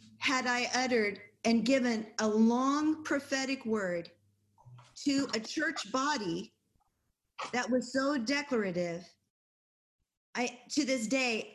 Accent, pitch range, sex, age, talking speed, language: American, 220-265 Hz, female, 40-59, 110 wpm, English